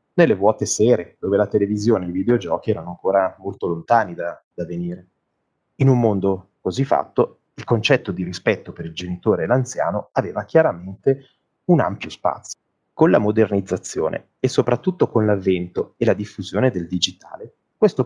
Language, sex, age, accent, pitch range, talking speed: Italian, male, 30-49, native, 90-135 Hz, 160 wpm